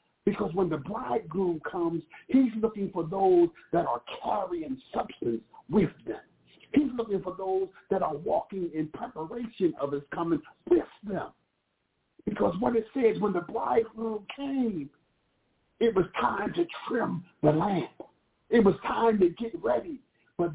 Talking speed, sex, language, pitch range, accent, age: 150 wpm, male, English, 180-240 Hz, American, 50-69